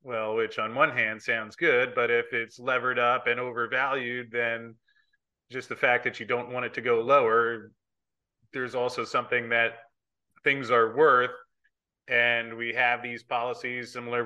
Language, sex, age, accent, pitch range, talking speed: English, male, 30-49, American, 120-140 Hz, 165 wpm